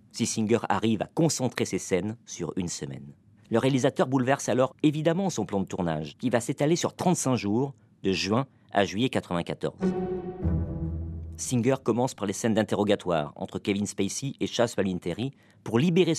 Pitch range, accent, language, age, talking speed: 100-145 Hz, French, French, 40-59, 165 wpm